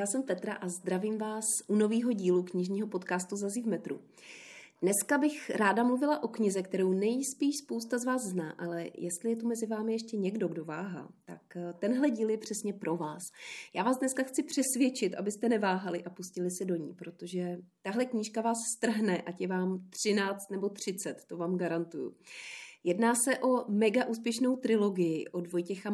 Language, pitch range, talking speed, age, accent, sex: Czech, 180-225 Hz, 175 wpm, 30-49, native, female